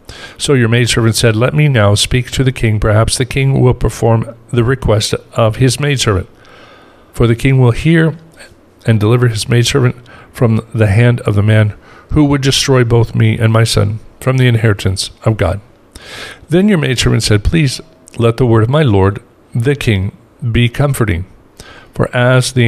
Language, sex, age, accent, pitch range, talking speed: English, male, 50-69, American, 105-125 Hz, 175 wpm